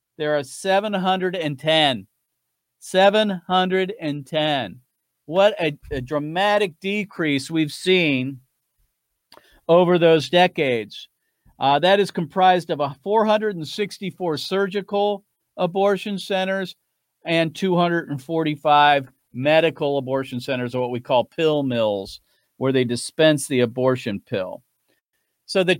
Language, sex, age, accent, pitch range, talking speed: English, male, 50-69, American, 135-175 Hz, 100 wpm